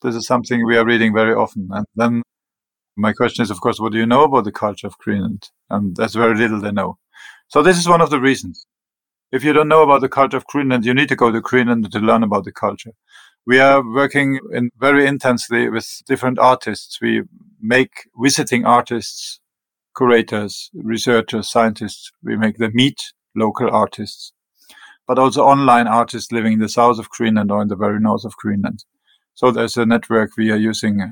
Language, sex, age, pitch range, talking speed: English, male, 50-69, 110-125 Hz, 200 wpm